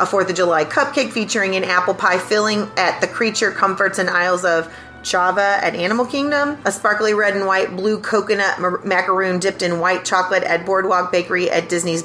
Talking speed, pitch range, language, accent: 190 wpm, 175-210 Hz, English, American